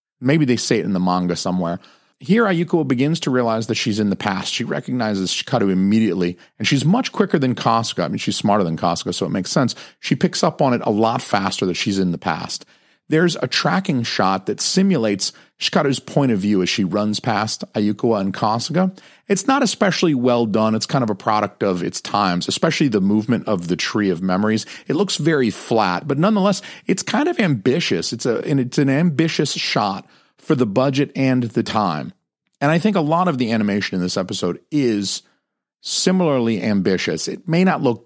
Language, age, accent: English, 40-59, American